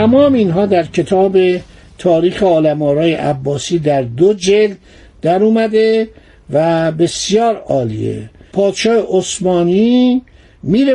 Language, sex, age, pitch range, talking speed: Persian, male, 60-79, 160-215 Hz, 105 wpm